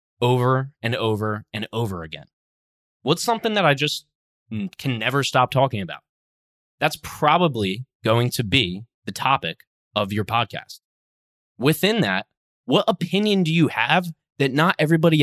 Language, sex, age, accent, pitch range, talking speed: English, male, 20-39, American, 105-150 Hz, 140 wpm